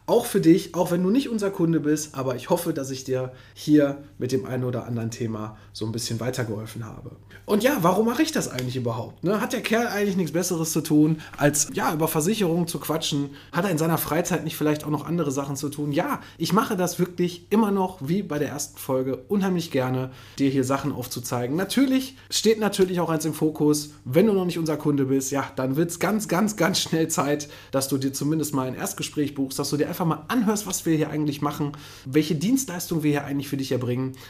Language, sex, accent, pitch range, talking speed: German, male, German, 130-165 Hz, 225 wpm